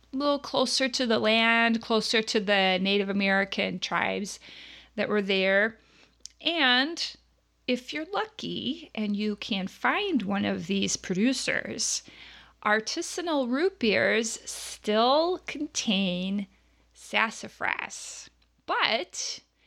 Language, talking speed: English, 100 wpm